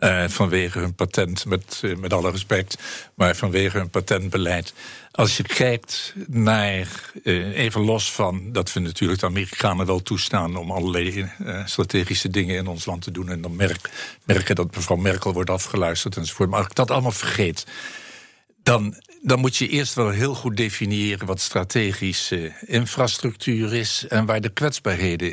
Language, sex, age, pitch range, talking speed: Dutch, male, 60-79, 90-110 Hz, 170 wpm